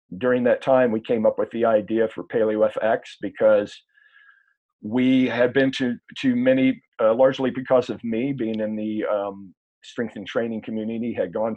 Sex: male